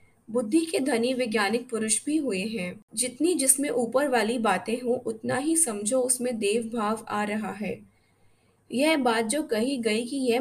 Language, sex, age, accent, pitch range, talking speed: Hindi, female, 20-39, native, 210-255 Hz, 175 wpm